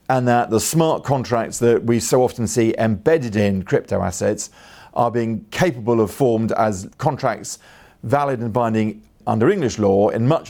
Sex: male